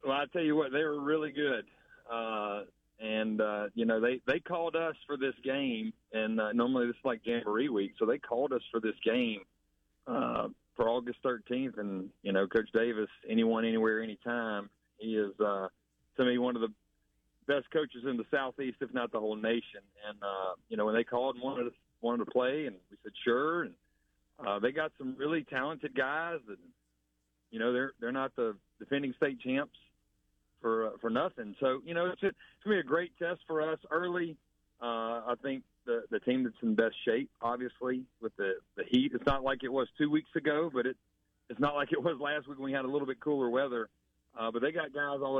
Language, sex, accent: English, male, American